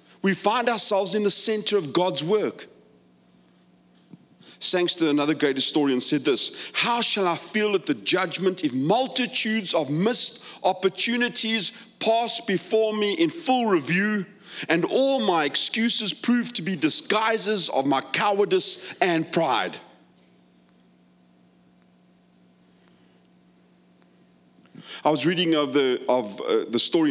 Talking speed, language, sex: 120 wpm, English, male